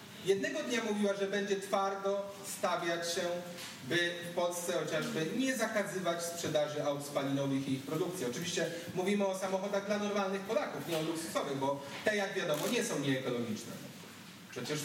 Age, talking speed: 30-49, 155 wpm